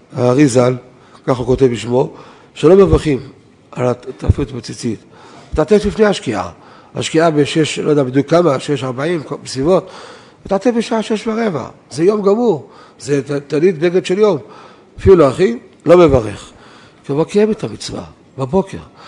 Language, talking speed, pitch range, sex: Hebrew, 135 wpm, 135-180 Hz, male